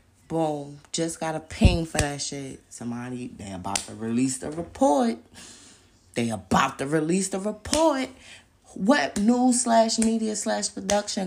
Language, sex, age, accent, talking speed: English, female, 20-39, American, 145 wpm